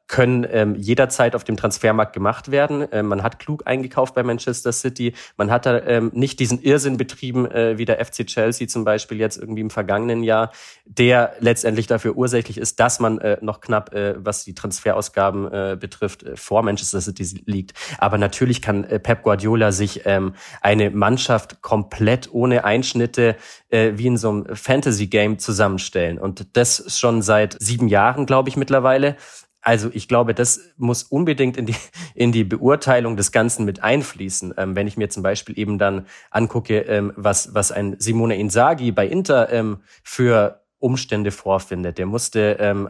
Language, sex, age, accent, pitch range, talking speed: German, male, 30-49, German, 100-120 Hz, 170 wpm